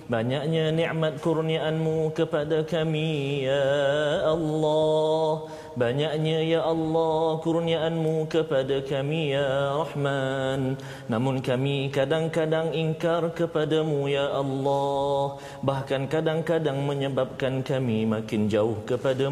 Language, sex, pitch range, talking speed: Malayalam, male, 140-160 Hz, 75 wpm